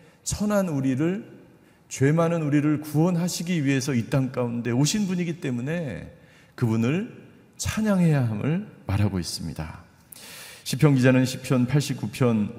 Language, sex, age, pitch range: Korean, male, 40-59, 110-155 Hz